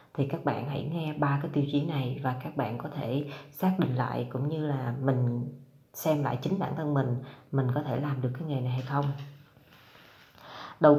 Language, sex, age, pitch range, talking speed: Vietnamese, female, 20-39, 130-150 Hz, 215 wpm